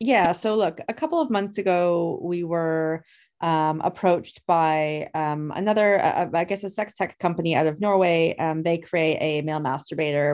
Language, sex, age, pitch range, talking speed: English, female, 30-49, 155-175 Hz, 175 wpm